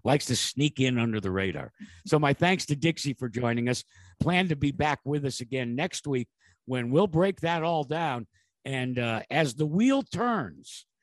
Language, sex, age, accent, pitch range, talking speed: English, male, 50-69, American, 105-150 Hz, 195 wpm